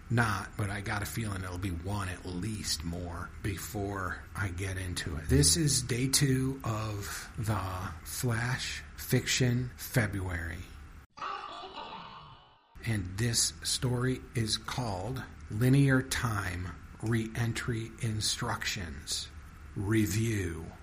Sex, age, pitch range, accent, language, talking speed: male, 50-69, 85-120 Hz, American, English, 105 wpm